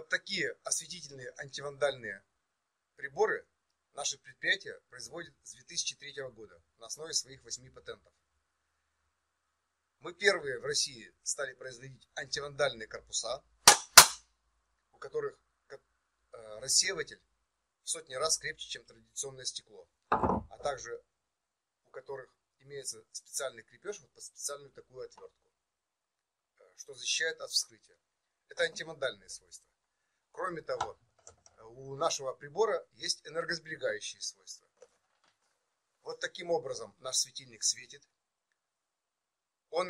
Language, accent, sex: Russian, native, male